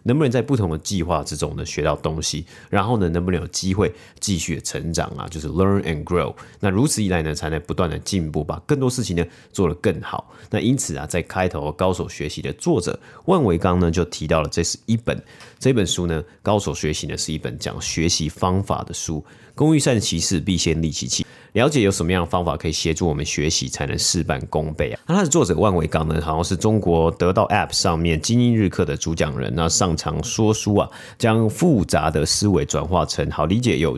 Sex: male